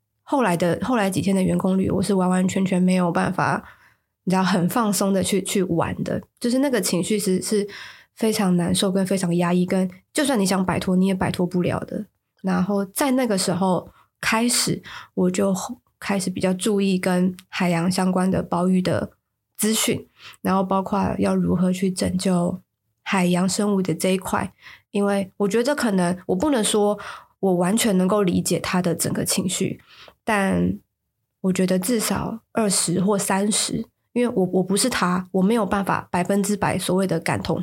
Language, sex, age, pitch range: Chinese, female, 20-39, 180-210 Hz